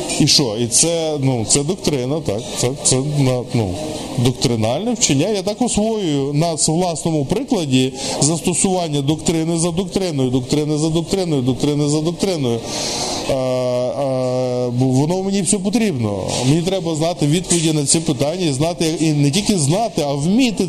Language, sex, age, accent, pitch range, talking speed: Ukrainian, male, 20-39, native, 125-165 Hz, 140 wpm